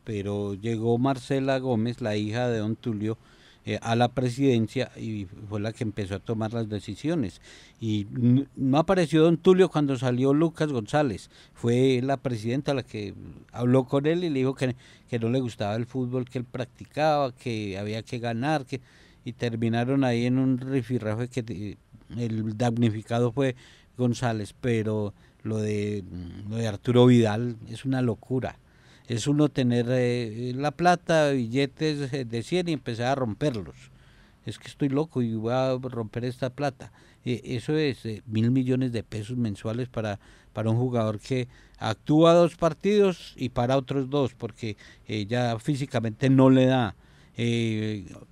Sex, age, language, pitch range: male, 50-69, Spanish, 110-135 Hz